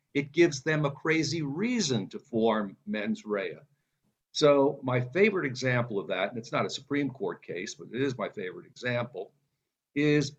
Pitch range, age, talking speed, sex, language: 125-150 Hz, 50-69, 175 wpm, male, English